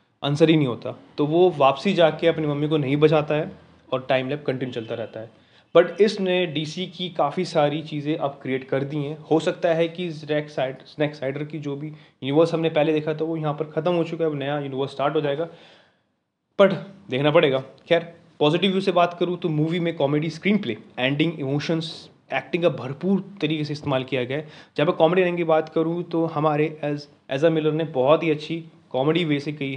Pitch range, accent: 145-170 Hz, native